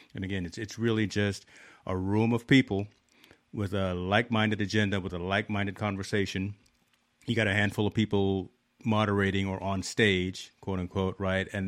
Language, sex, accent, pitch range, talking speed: English, male, American, 95-110 Hz, 165 wpm